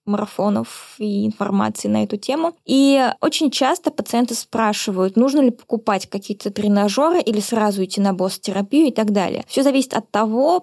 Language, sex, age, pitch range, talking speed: Russian, female, 20-39, 205-255 Hz, 160 wpm